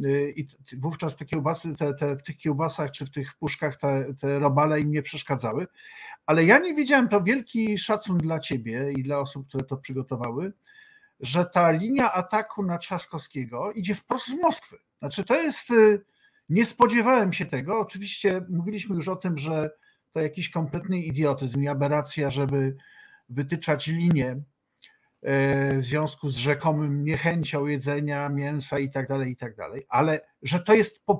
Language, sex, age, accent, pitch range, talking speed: Polish, male, 50-69, native, 140-185 Hz, 160 wpm